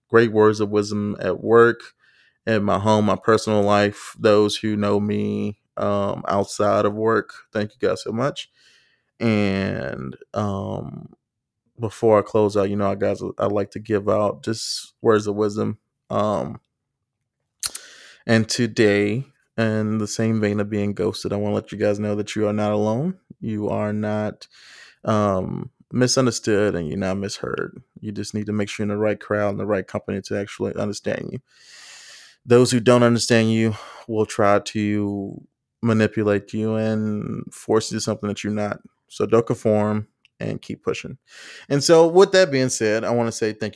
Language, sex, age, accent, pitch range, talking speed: English, male, 20-39, American, 105-115 Hz, 175 wpm